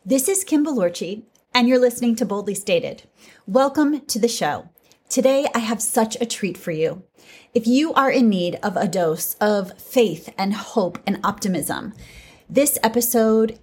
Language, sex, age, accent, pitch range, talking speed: English, female, 30-49, American, 195-250 Hz, 165 wpm